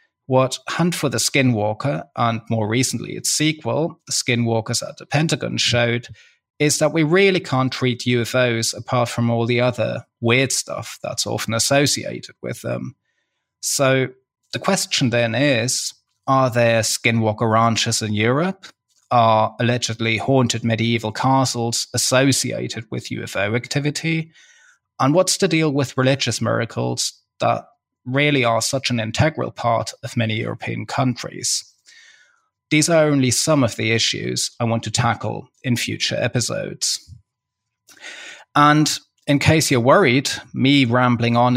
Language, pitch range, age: English, 115-140 Hz, 20-39